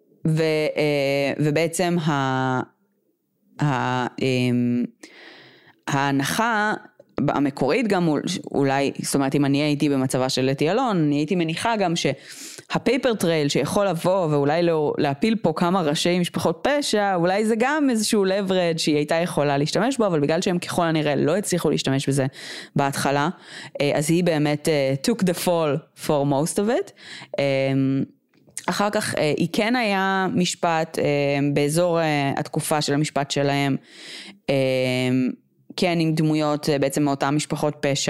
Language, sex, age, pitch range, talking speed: Hebrew, female, 20-39, 140-175 Hz, 125 wpm